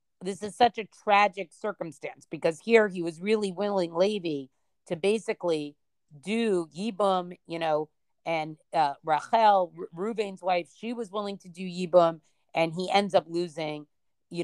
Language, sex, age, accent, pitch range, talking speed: English, female, 40-59, American, 155-195 Hz, 150 wpm